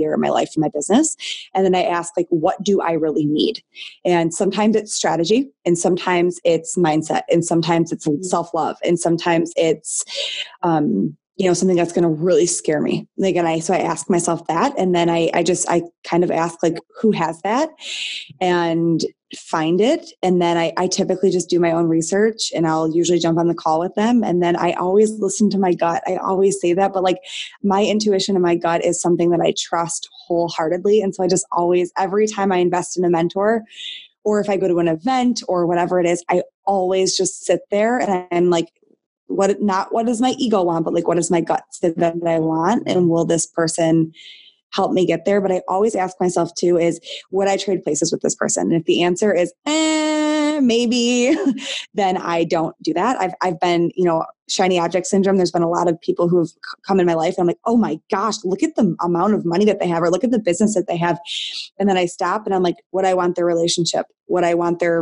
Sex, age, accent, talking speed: female, 20-39, American, 230 wpm